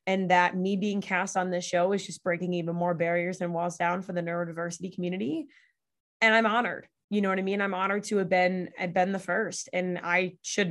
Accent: American